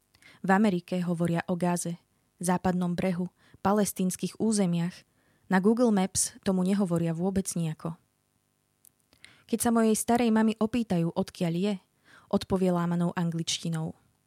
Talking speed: 115 wpm